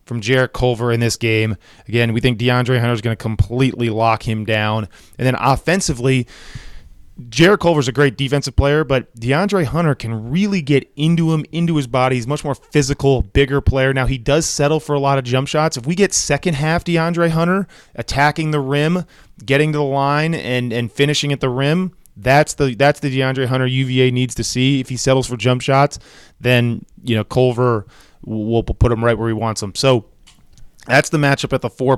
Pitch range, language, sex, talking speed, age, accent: 120-145 Hz, English, male, 210 wpm, 20-39, American